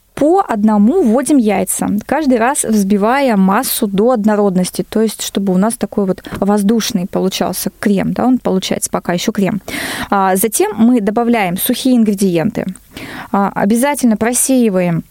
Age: 20-39